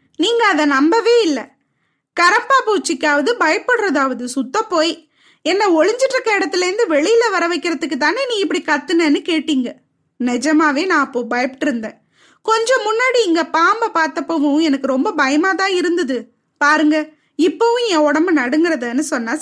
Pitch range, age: 280-385 Hz, 20-39